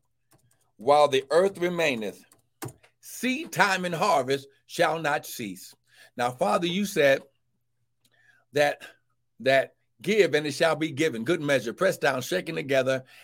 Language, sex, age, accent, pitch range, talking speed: English, male, 60-79, American, 120-150 Hz, 130 wpm